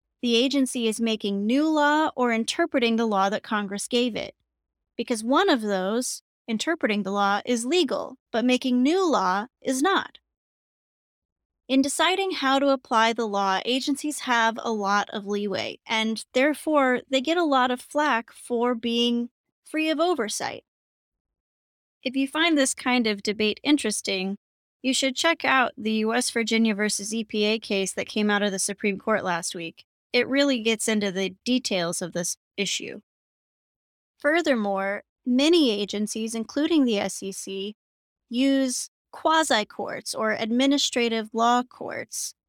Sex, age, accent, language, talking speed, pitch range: female, 10-29, American, English, 145 wpm, 205-270 Hz